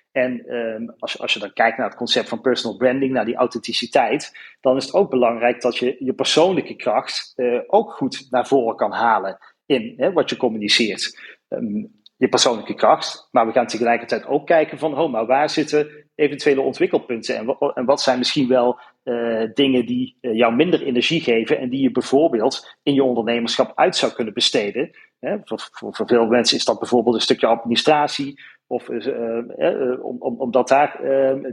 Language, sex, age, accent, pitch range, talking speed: Dutch, male, 40-59, Dutch, 125-150 Hz, 190 wpm